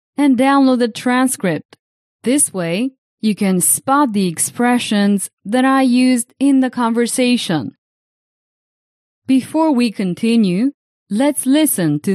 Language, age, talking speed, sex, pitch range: English, 30-49, 115 wpm, female, 195-270 Hz